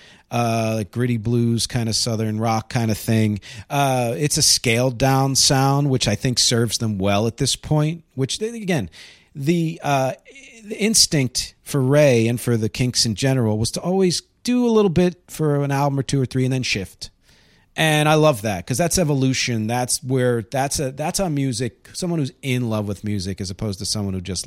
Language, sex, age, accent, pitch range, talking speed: English, male, 40-59, American, 105-150 Hz, 200 wpm